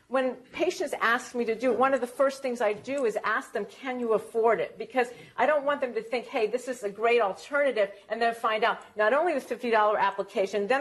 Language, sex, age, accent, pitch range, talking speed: English, female, 50-69, American, 210-265 Hz, 245 wpm